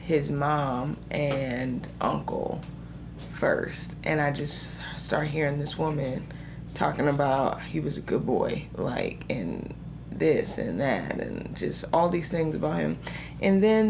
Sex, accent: female, American